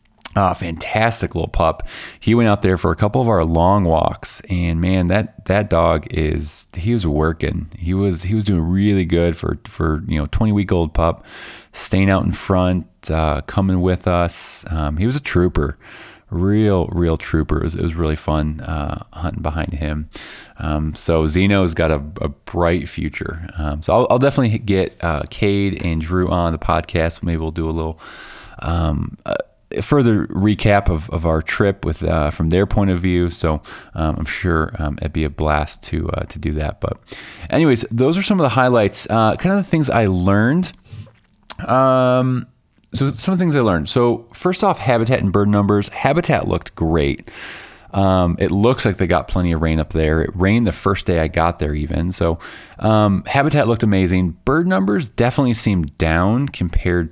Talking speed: 195 wpm